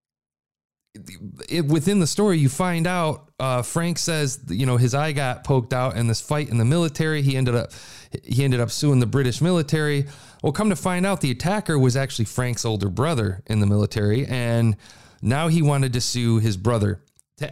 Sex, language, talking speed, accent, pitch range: male, English, 190 wpm, American, 110-160 Hz